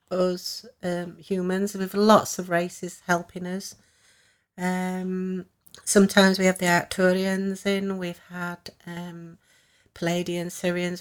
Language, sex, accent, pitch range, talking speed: English, female, British, 175-190 Hz, 115 wpm